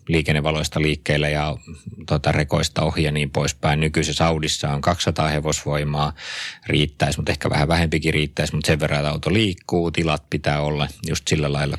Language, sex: Finnish, male